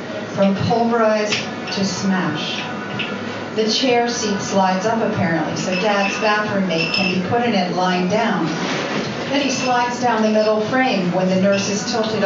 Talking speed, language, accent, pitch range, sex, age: 160 wpm, English, American, 190-240 Hz, female, 40-59